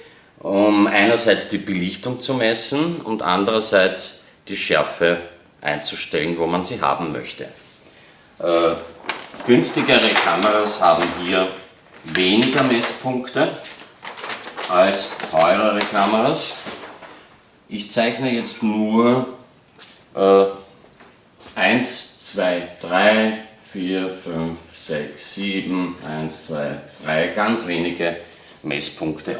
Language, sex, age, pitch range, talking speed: German, male, 40-59, 90-115 Hz, 90 wpm